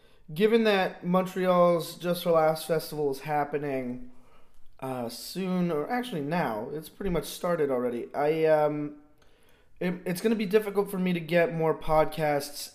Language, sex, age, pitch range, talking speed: English, male, 20-39, 135-170 Hz, 155 wpm